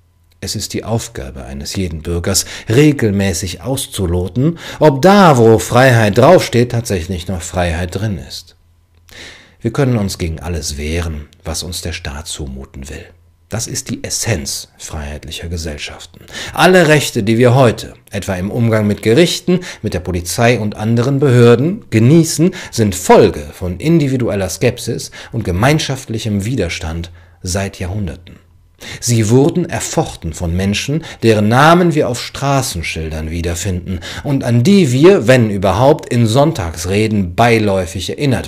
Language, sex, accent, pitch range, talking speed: English, male, German, 90-125 Hz, 135 wpm